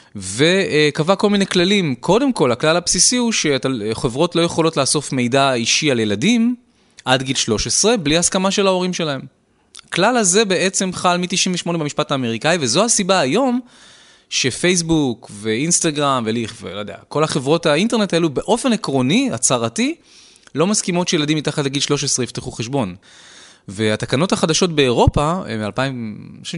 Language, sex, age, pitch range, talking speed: Hebrew, male, 20-39, 120-175 Hz, 140 wpm